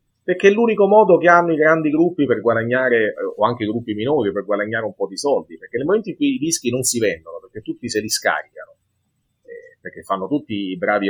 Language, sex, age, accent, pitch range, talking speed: Italian, male, 30-49, native, 105-160 Hz, 235 wpm